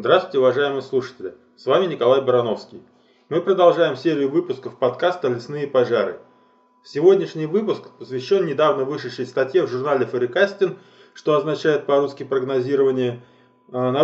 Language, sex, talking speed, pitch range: Russian, male, 120 wpm, 135-205 Hz